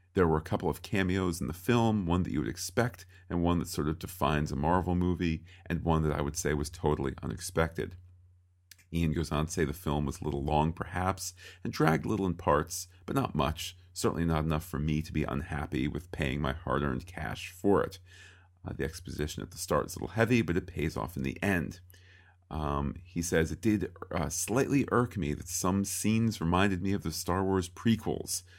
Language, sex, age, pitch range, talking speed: English, male, 40-59, 80-95 Hz, 220 wpm